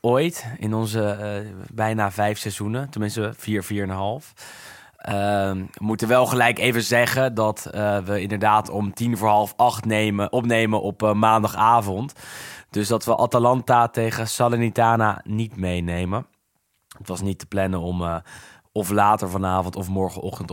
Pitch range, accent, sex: 100-120 Hz, Dutch, male